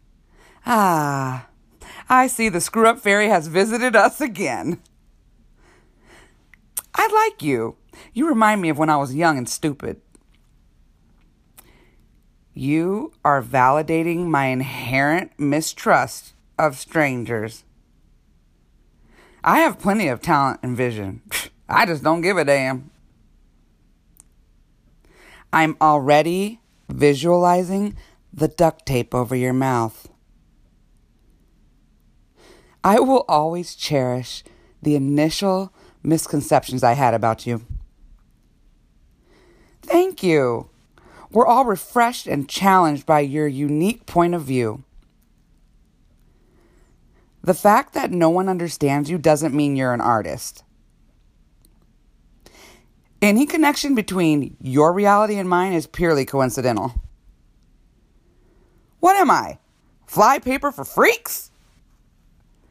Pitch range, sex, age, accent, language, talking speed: 130-195 Hz, female, 40-59, American, English, 100 wpm